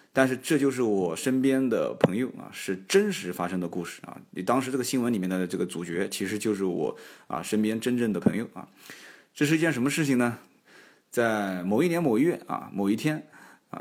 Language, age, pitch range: Chinese, 20-39, 100-150 Hz